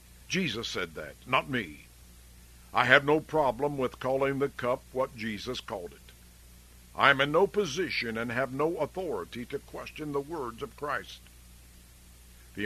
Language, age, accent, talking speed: English, 60-79, American, 155 wpm